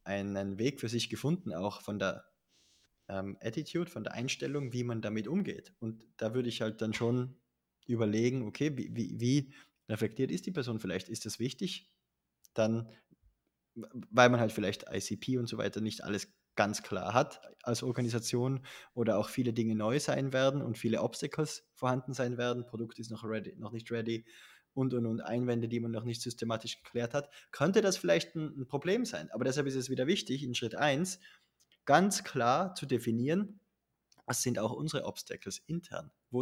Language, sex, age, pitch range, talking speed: German, male, 20-39, 110-140 Hz, 180 wpm